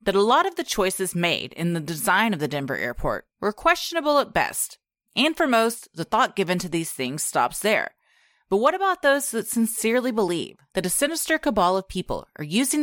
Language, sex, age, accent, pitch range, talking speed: English, female, 30-49, American, 175-260 Hz, 205 wpm